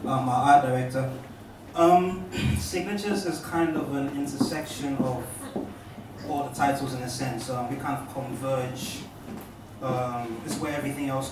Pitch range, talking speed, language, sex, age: 115-135 Hz, 150 wpm, English, male, 20-39